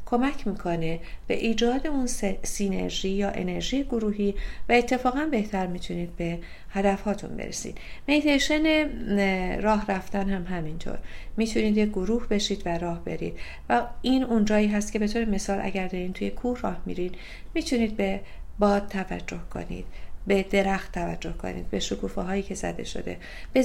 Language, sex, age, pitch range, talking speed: Persian, female, 50-69, 175-225 Hz, 150 wpm